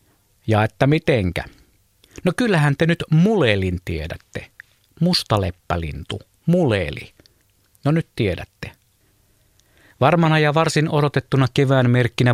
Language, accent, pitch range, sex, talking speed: Finnish, native, 100-140 Hz, male, 100 wpm